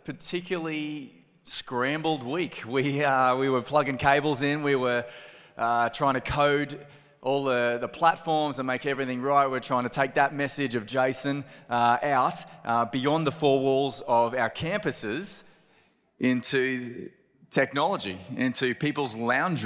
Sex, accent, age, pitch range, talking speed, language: male, Australian, 20-39, 120-145 Hz, 145 wpm, English